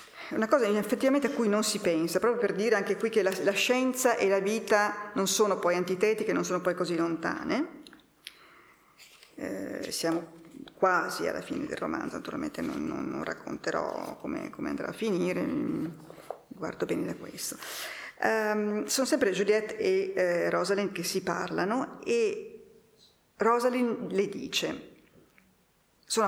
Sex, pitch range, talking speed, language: female, 175-245 Hz, 150 wpm, Italian